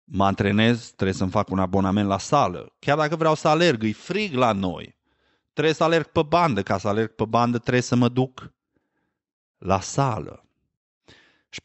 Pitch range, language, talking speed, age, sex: 100-135 Hz, Romanian, 180 wpm, 30-49, male